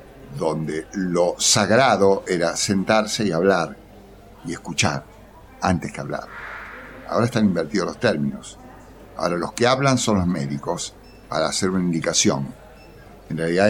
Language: Spanish